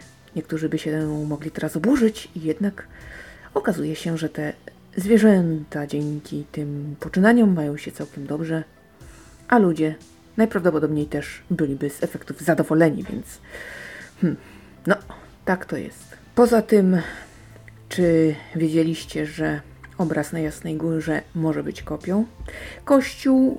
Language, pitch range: Polish, 145-185 Hz